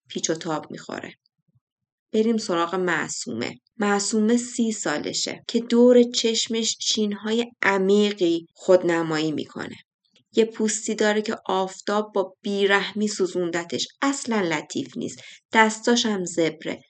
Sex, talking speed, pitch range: female, 110 wpm, 180-235 Hz